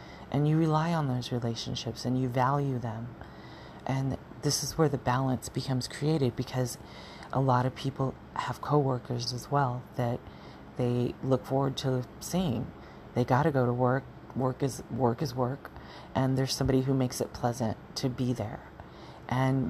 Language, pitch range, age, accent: English, 125-140 Hz, 40-59, American